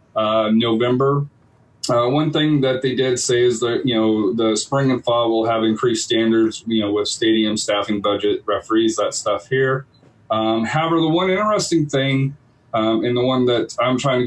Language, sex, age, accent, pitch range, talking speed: English, male, 30-49, American, 115-140 Hz, 190 wpm